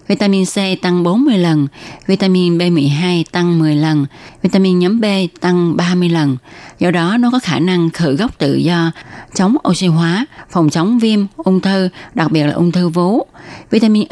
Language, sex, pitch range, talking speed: Vietnamese, female, 155-200 Hz, 175 wpm